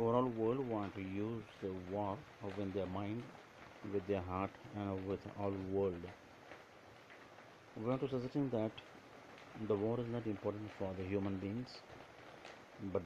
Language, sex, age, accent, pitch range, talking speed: Marathi, male, 50-69, native, 100-120 Hz, 145 wpm